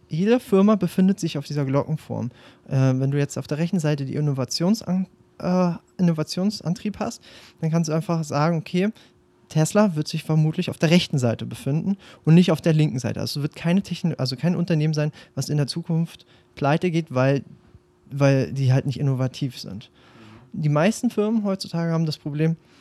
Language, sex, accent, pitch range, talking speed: German, male, German, 140-185 Hz, 185 wpm